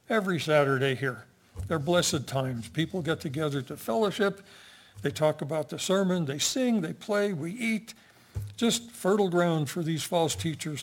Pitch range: 130-170 Hz